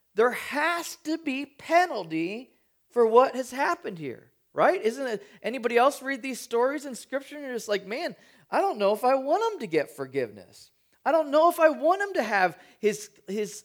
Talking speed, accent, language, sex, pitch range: 200 wpm, American, English, male, 210-285 Hz